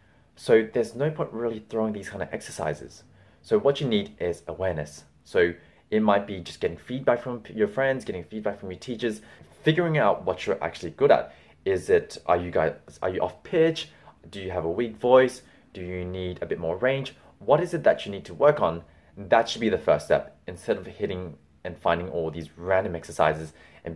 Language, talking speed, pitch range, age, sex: English, 215 wpm, 85-125 Hz, 20-39, male